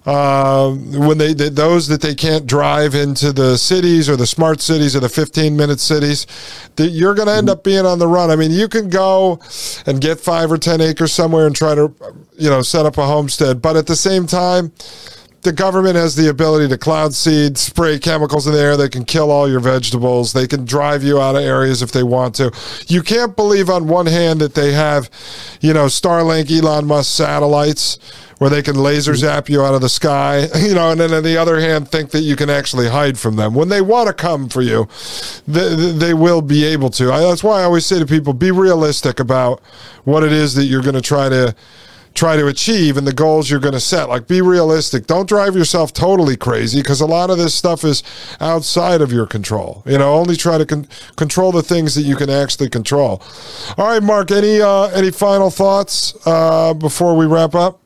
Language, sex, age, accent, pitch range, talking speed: English, male, 40-59, American, 140-170 Hz, 225 wpm